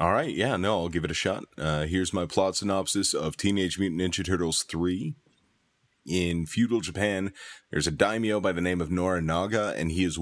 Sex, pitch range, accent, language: male, 85-100 Hz, American, English